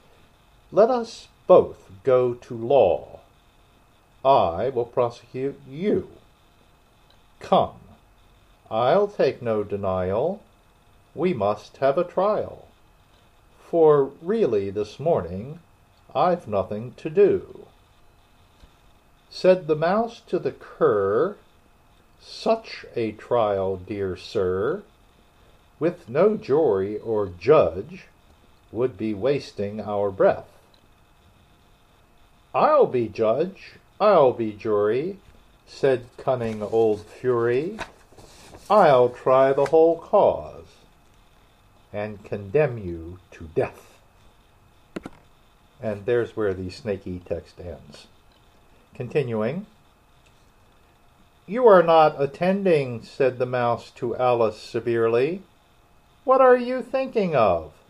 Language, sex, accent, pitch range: Korean, male, American, 105-160 Hz